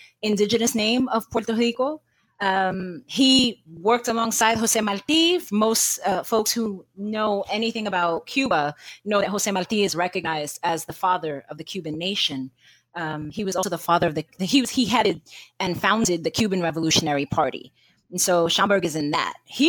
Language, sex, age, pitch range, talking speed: English, female, 30-49, 175-220 Hz, 175 wpm